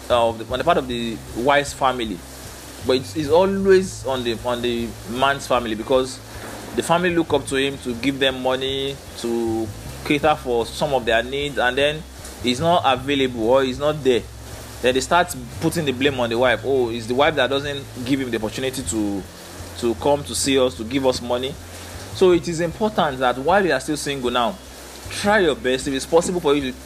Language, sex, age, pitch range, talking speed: English, male, 20-39, 115-150 Hz, 210 wpm